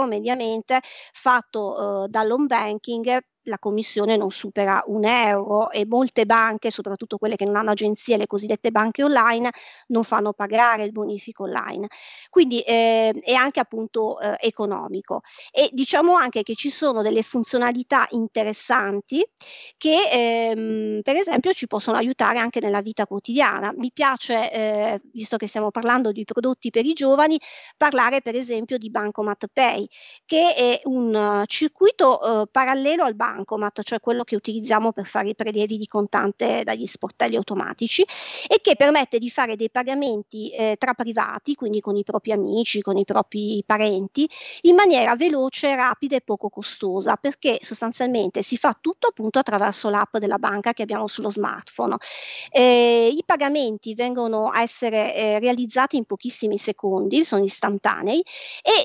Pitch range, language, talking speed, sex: 210-255 Hz, Italian, 155 wpm, female